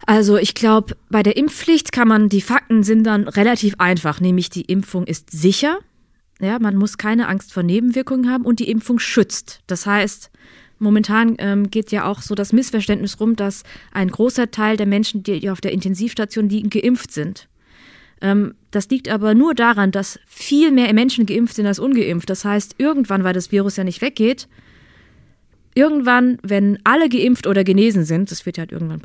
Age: 20-39